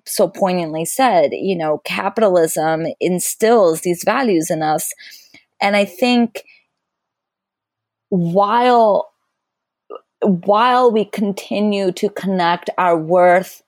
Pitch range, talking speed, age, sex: 180-225 Hz, 95 wpm, 30-49, female